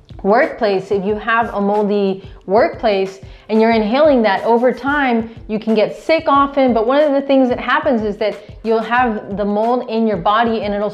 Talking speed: 195 wpm